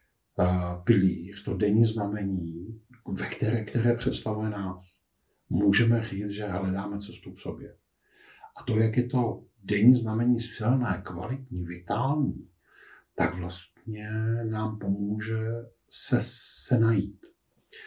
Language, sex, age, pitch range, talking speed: Czech, male, 50-69, 95-115 Hz, 110 wpm